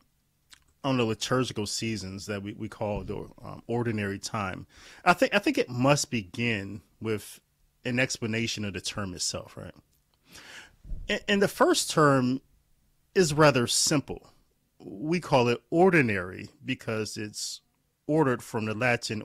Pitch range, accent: 110-140 Hz, American